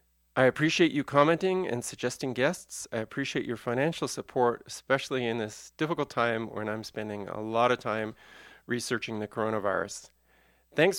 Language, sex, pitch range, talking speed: English, male, 105-130 Hz, 155 wpm